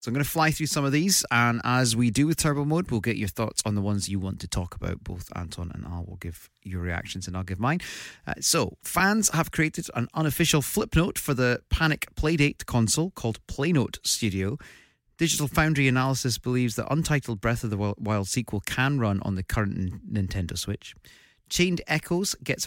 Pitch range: 100-140 Hz